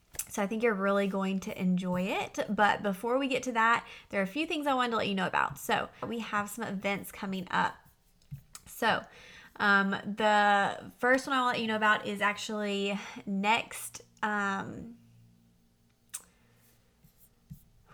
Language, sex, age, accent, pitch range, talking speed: English, female, 20-39, American, 195-220 Hz, 165 wpm